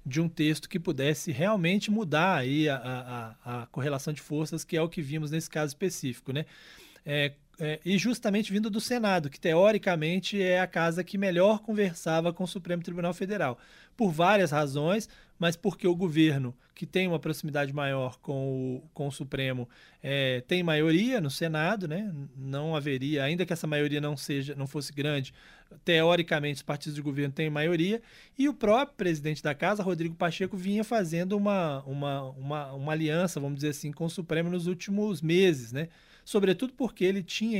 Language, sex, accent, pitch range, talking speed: Portuguese, male, Brazilian, 145-185 Hz, 170 wpm